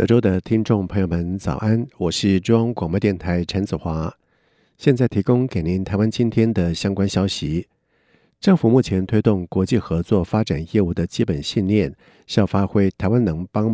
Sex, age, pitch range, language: male, 50-69, 95-115 Hz, Chinese